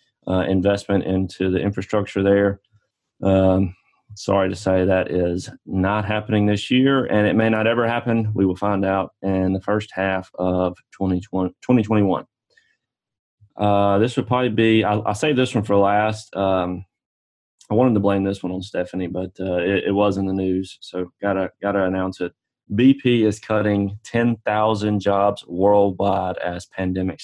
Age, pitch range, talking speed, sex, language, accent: 30-49, 95-105 Hz, 165 wpm, male, English, American